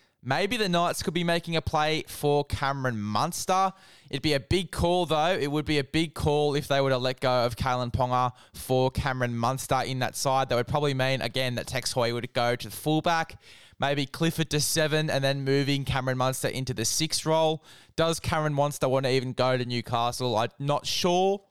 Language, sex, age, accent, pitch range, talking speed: English, male, 10-29, Australian, 125-150 Hz, 210 wpm